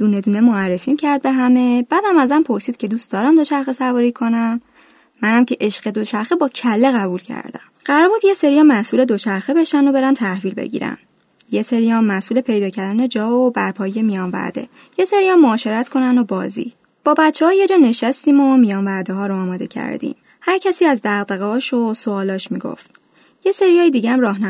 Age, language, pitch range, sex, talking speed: 10-29, Persian, 215-295 Hz, female, 170 wpm